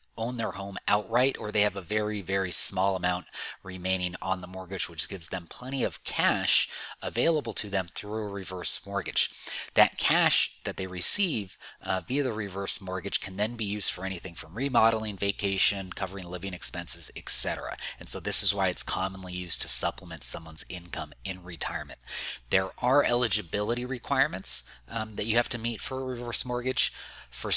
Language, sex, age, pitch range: English, male, 30-49, 95-115 Hz